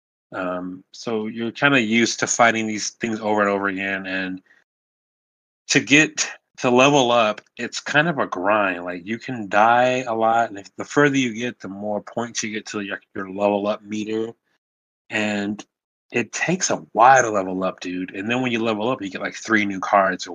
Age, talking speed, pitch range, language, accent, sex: 30-49, 205 wpm, 95-115 Hz, English, American, male